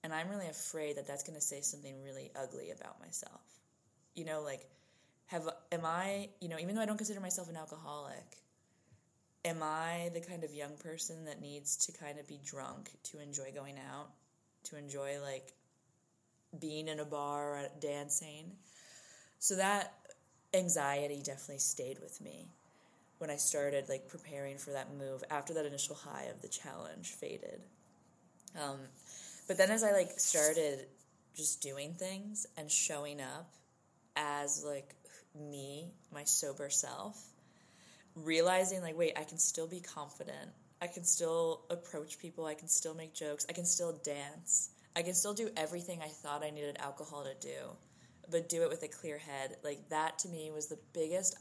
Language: English